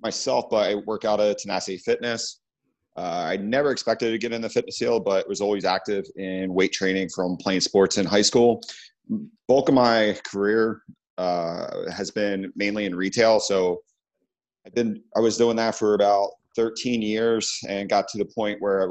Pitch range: 95-115 Hz